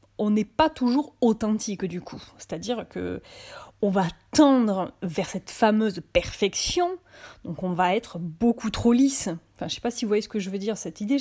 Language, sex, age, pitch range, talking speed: French, female, 30-49, 195-245 Hz, 205 wpm